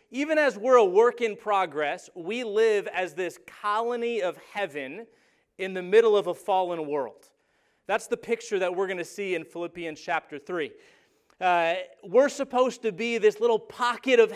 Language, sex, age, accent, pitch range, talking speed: English, male, 30-49, American, 170-235 Hz, 170 wpm